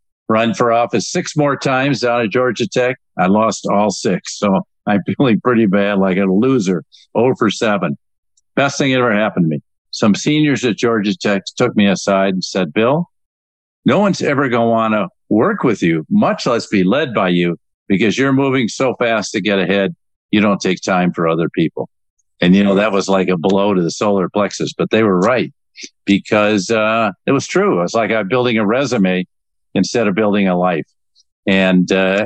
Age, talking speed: 50-69, 200 wpm